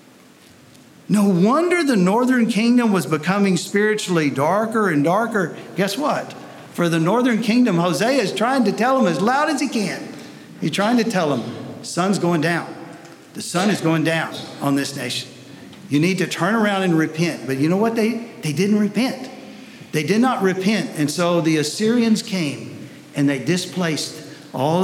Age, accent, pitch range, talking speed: 50-69, American, 150-215 Hz, 175 wpm